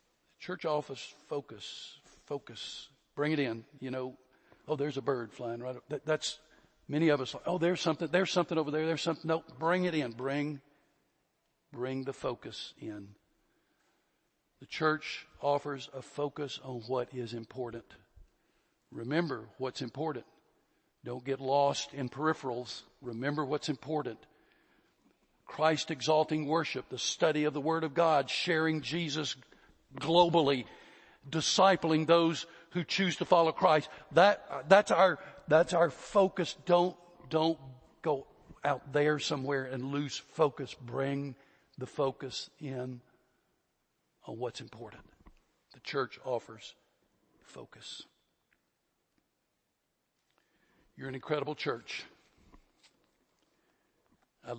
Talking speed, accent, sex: 125 wpm, American, male